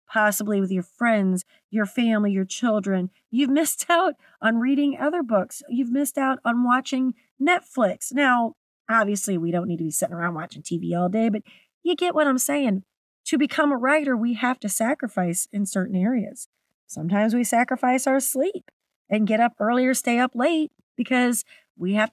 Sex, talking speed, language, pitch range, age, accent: female, 180 wpm, English, 200-270 Hz, 40-59, American